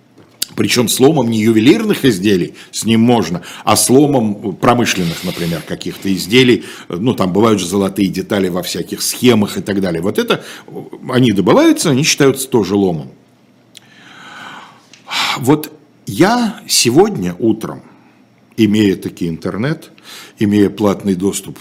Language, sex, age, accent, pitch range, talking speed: Russian, male, 60-79, native, 95-135 Hz, 120 wpm